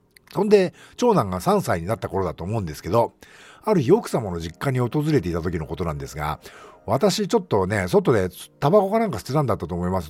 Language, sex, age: Japanese, male, 50-69